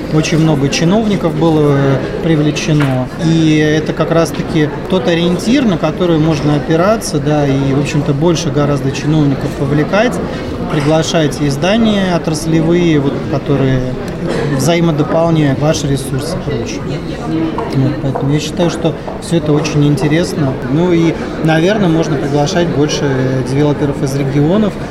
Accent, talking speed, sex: native, 120 wpm, male